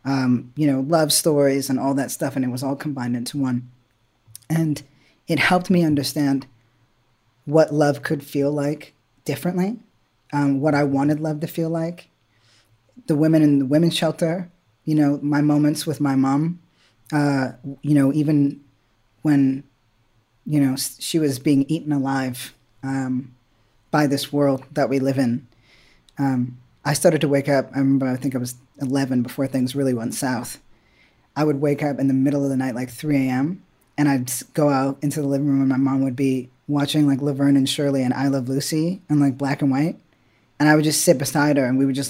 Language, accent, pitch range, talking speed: English, American, 130-150 Hz, 195 wpm